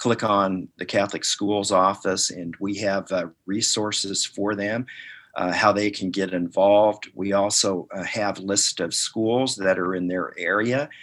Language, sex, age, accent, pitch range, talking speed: English, male, 50-69, American, 95-110 Hz, 170 wpm